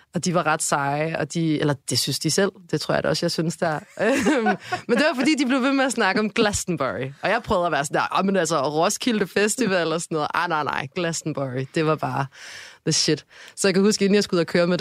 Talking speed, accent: 270 wpm, native